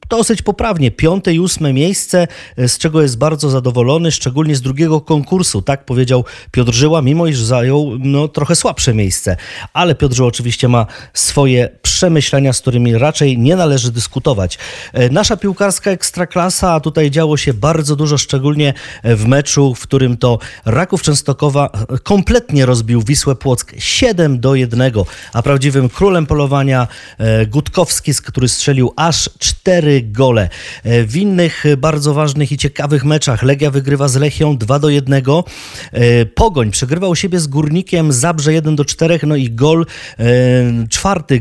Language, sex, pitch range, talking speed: Polish, male, 125-165 Hz, 145 wpm